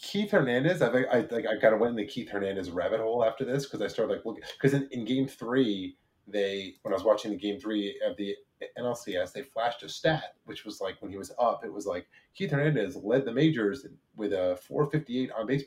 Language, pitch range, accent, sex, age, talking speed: English, 105-140 Hz, American, male, 30-49, 230 wpm